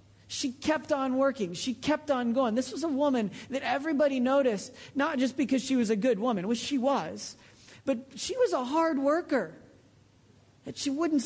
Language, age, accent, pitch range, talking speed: English, 40-59, American, 140-235 Hz, 185 wpm